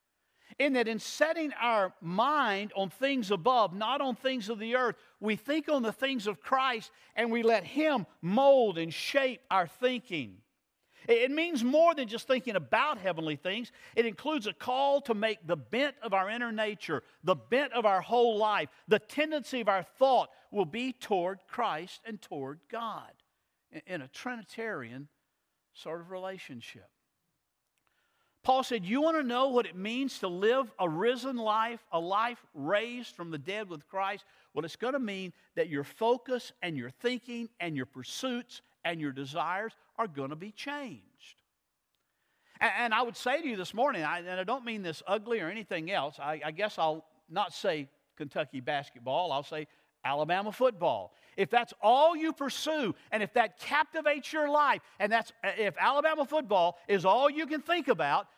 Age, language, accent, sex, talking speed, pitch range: 50-69, English, American, male, 175 wpm, 180-255 Hz